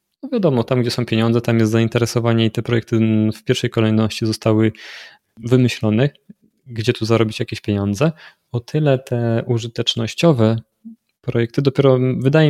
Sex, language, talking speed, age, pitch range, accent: male, Polish, 140 wpm, 20-39, 110-130 Hz, native